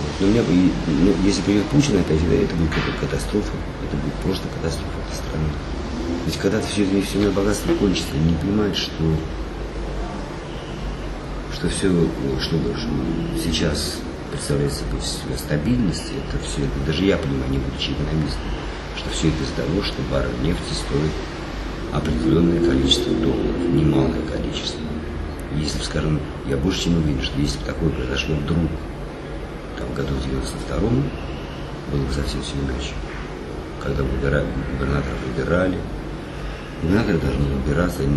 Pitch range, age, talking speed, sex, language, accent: 70-85 Hz, 50-69, 140 wpm, male, Russian, native